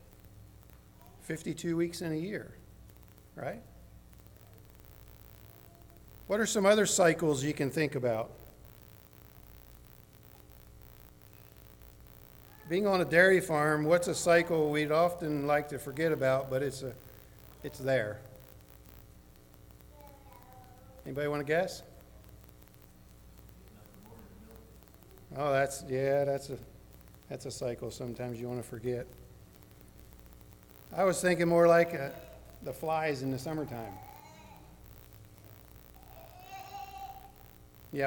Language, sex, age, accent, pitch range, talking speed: English, male, 50-69, American, 105-165 Hz, 100 wpm